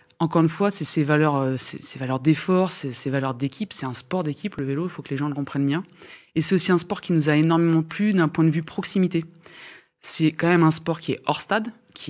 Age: 20-39